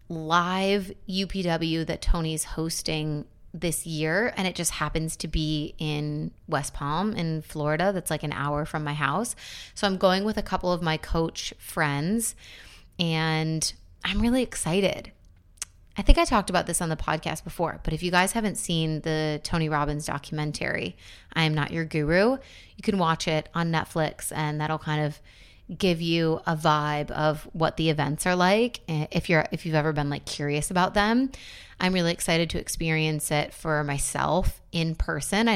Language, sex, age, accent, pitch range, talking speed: English, female, 20-39, American, 150-180 Hz, 175 wpm